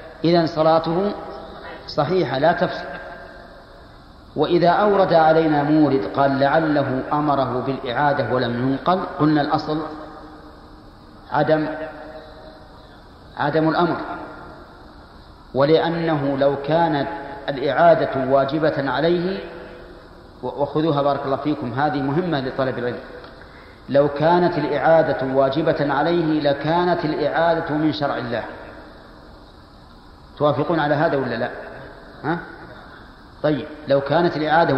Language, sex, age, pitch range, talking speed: Arabic, male, 40-59, 140-165 Hz, 95 wpm